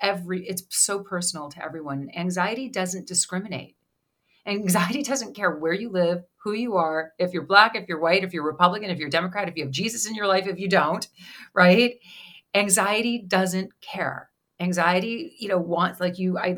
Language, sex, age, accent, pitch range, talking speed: English, female, 40-59, American, 165-200 Hz, 185 wpm